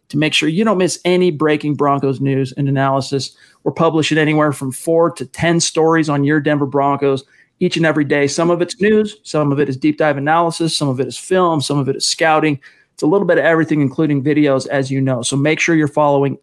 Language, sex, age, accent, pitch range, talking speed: English, male, 40-59, American, 145-165 Hz, 235 wpm